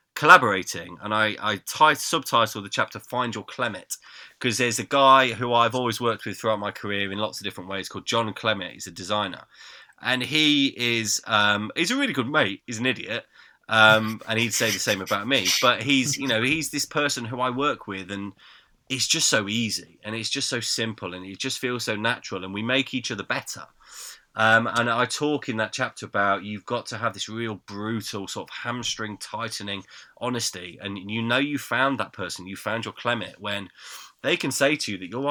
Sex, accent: male, British